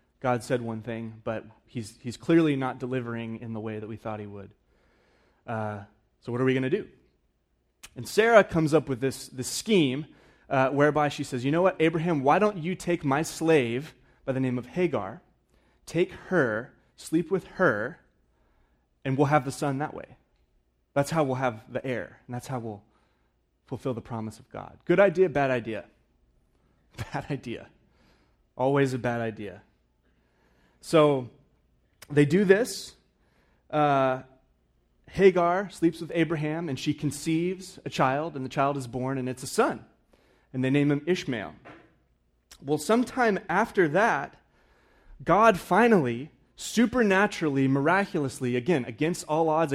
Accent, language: American, English